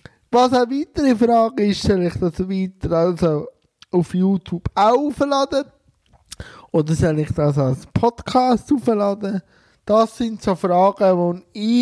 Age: 20-39